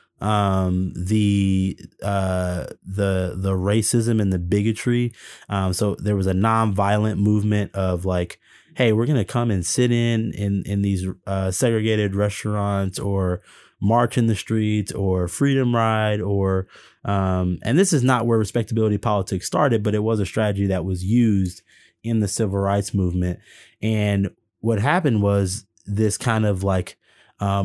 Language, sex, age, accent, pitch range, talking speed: English, male, 20-39, American, 95-115 Hz, 155 wpm